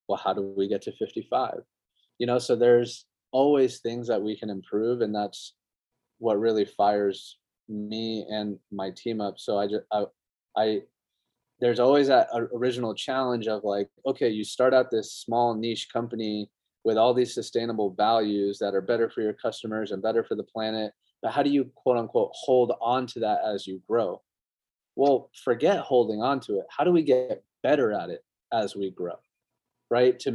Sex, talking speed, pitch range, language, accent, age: male, 185 wpm, 100-120 Hz, English, American, 20-39